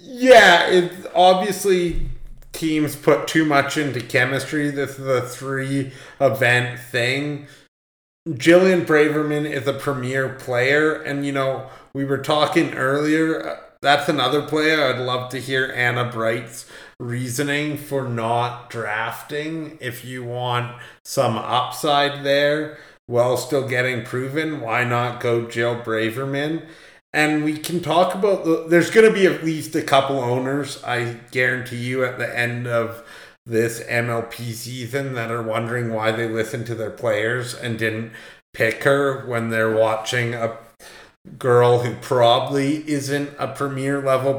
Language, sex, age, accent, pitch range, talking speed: English, male, 30-49, American, 120-150 Hz, 140 wpm